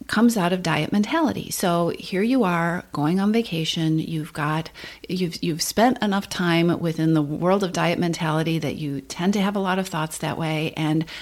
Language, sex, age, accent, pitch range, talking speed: English, female, 40-59, American, 160-235 Hz, 200 wpm